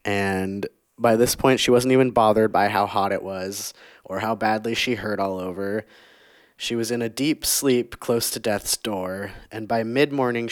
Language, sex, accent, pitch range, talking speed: English, male, American, 100-120 Hz, 190 wpm